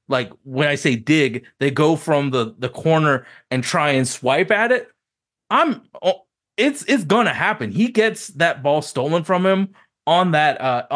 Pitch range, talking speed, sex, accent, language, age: 125-180 Hz, 180 wpm, male, American, English, 30-49